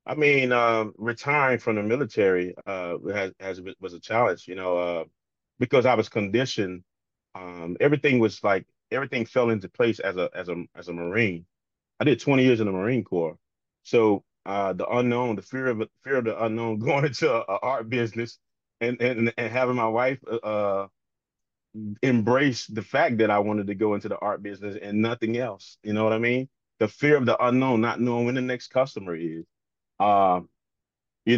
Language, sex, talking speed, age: English, male, 195 wpm, 30-49